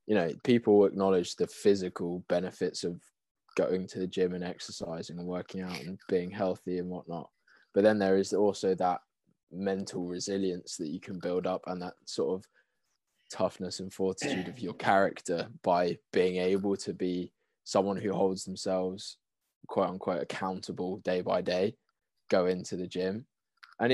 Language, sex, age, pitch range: English, male, 20-39, 90-100 Hz